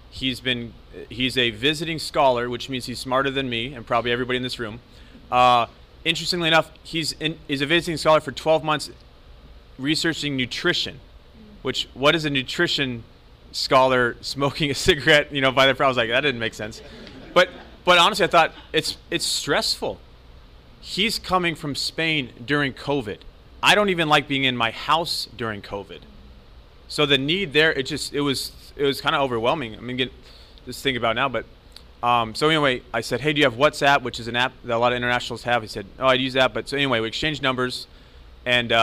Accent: American